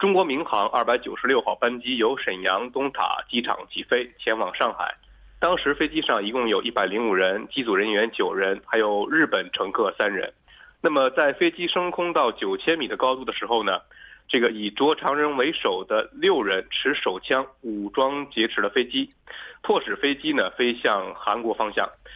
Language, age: Korean, 20-39